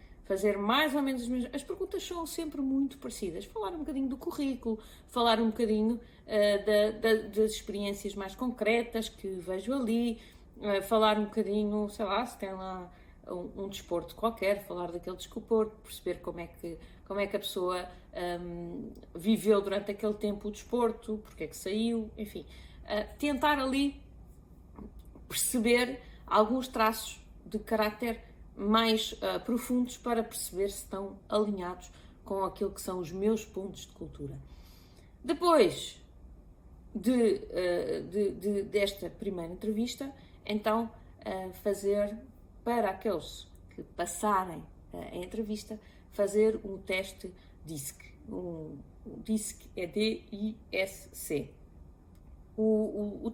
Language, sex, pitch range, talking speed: Portuguese, female, 190-230 Hz, 135 wpm